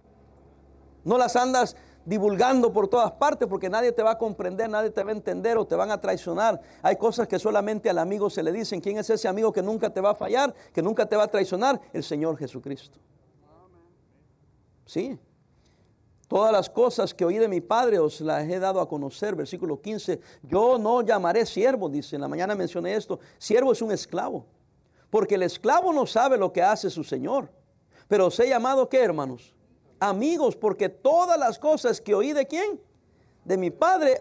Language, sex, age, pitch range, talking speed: English, male, 50-69, 185-245 Hz, 195 wpm